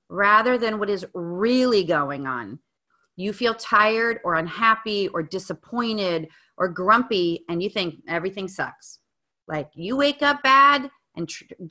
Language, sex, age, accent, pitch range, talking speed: English, female, 40-59, American, 180-240 Hz, 140 wpm